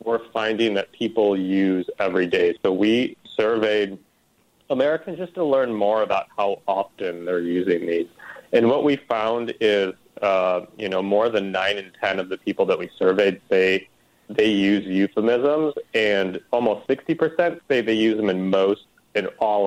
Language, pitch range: English, 100-145 Hz